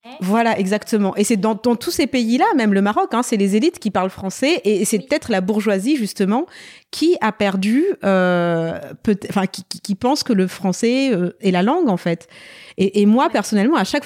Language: French